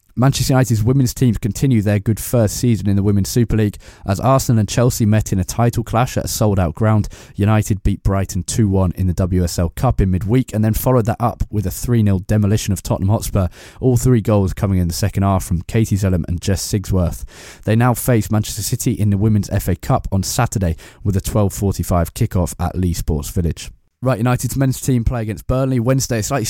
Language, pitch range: English, 95-115 Hz